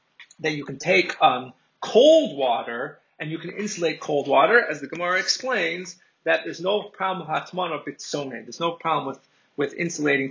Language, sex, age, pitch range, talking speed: English, male, 30-49, 140-205 Hz, 175 wpm